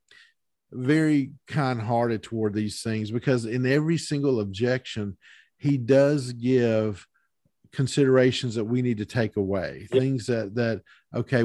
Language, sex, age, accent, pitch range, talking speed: English, male, 50-69, American, 110-130 Hz, 125 wpm